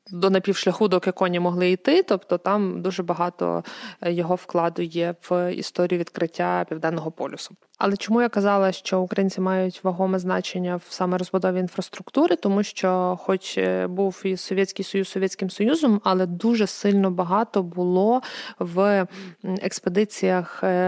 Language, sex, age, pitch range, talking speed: Ukrainian, female, 20-39, 180-200 Hz, 135 wpm